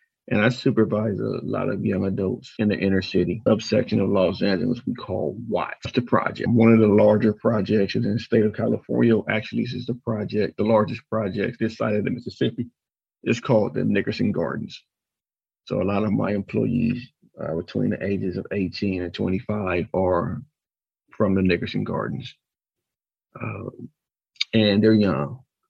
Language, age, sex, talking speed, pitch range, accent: English, 40-59, male, 170 wpm, 100-120 Hz, American